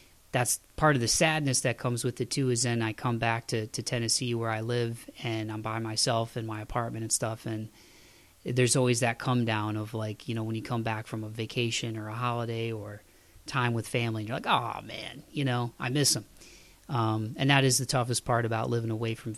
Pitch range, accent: 115-130 Hz, American